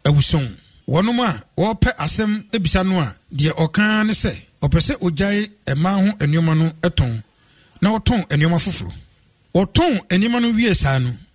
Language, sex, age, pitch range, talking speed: English, male, 50-69, 150-220 Hz, 125 wpm